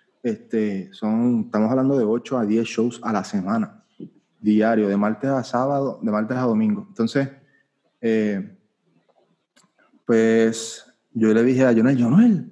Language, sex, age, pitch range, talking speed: Spanish, male, 30-49, 110-160 Hz, 145 wpm